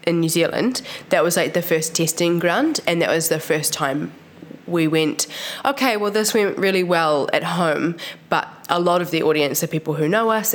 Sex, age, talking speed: female, 20-39, 210 wpm